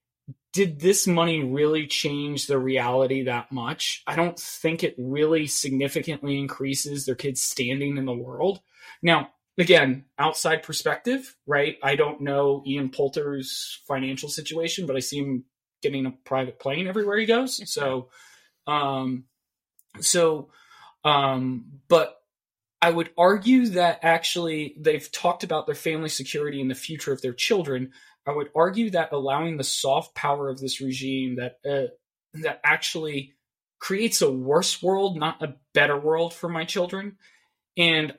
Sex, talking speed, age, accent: male, 150 wpm, 20-39, American